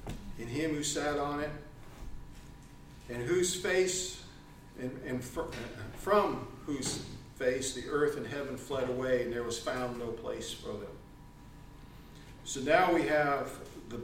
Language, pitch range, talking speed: English, 125-150 Hz, 145 wpm